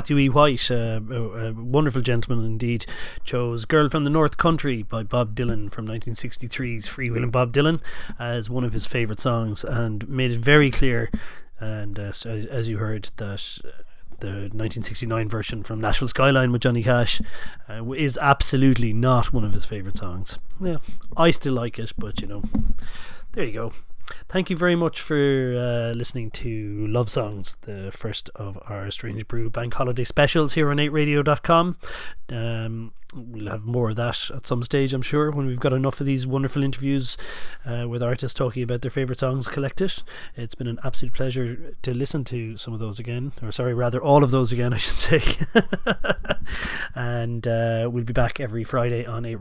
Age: 30-49